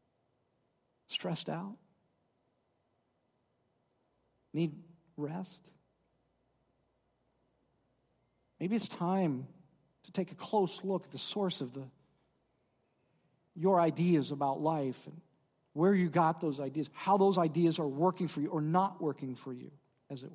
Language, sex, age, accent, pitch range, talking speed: English, male, 50-69, American, 140-180 Hz, 120 wpm